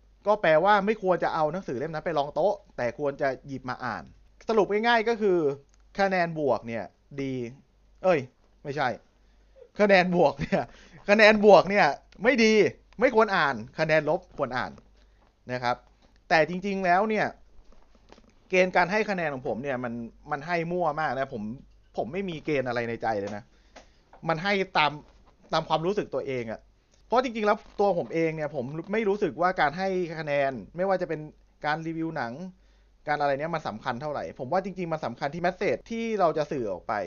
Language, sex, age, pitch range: Thai, male, 30-49, 120-180 Hz